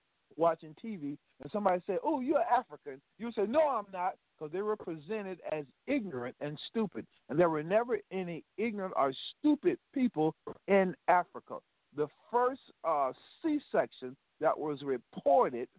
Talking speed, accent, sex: 150 wpm, American, male